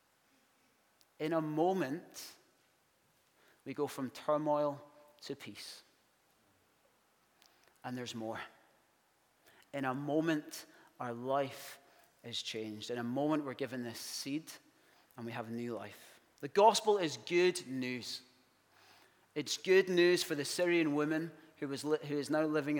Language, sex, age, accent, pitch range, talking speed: English, male, 30-49, British, 130-175 Hz, 135 wpm